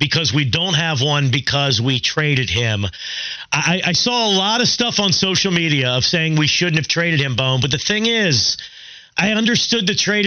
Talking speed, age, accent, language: 205 wpm, 40-59, American, English